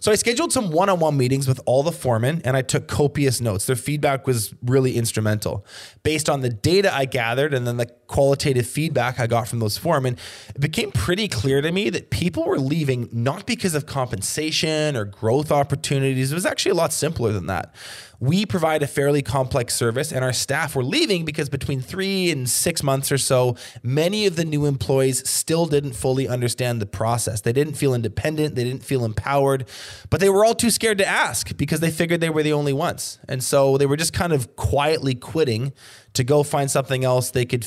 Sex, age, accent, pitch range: male, 20-39, American, 120-150 Hz